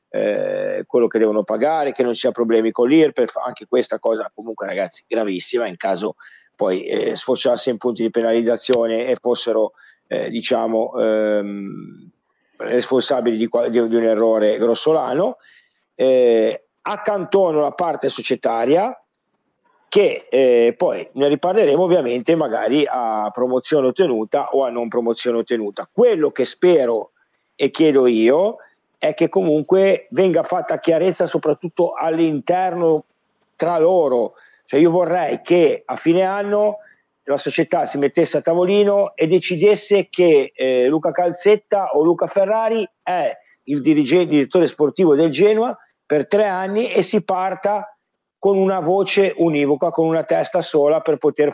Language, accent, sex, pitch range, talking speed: Italian, native, male, 125-195 Hz, 140 wpm